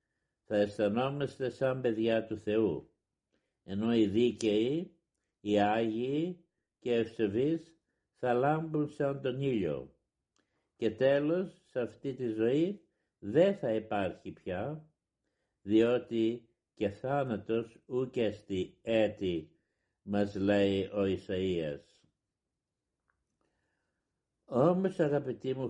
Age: 60-79